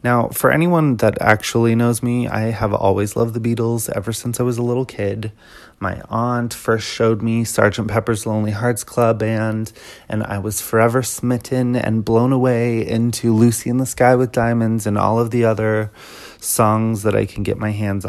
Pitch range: 100-120 Hz